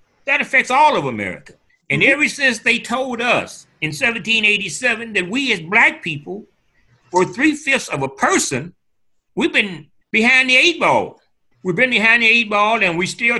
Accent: American